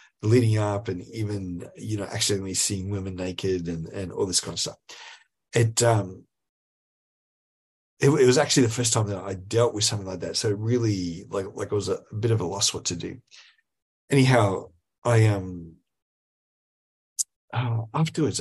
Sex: male